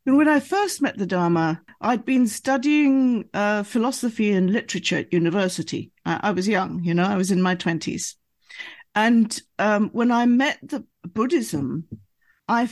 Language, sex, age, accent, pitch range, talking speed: English, female, 50-69, British, 180-245 Hz, 160 wpm